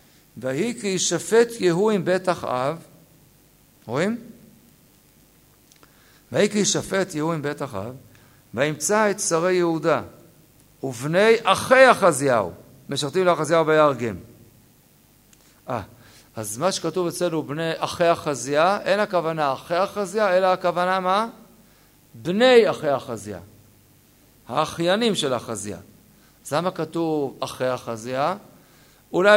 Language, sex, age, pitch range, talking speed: Hebrew, male, 50-69, 140-200 Hz, 105 wpm